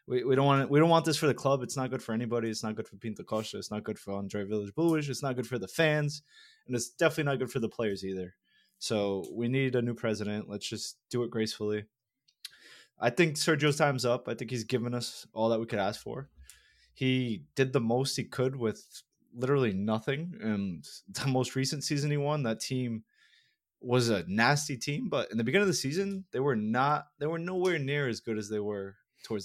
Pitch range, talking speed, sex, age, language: 110-135 Hz, 230 wpm, male, 20-39, English